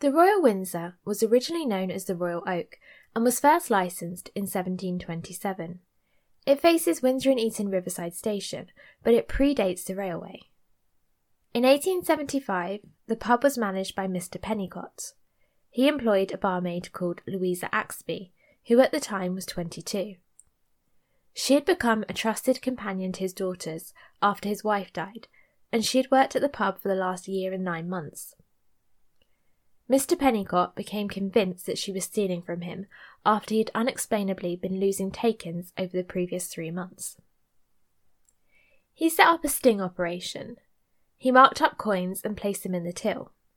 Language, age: English, 10-29